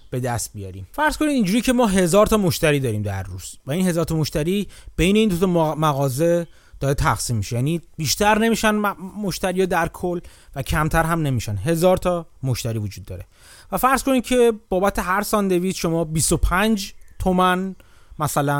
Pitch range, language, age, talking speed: 135-195 Hz, Persian, 30-49, 170 wpm